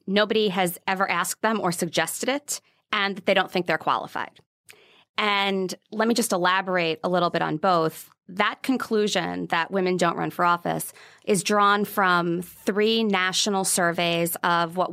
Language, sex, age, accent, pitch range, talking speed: English, female, 20-39, American, 170-205 Hz, 160 wpm